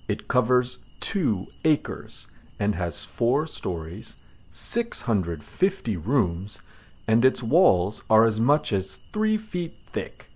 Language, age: Spanish, 40-59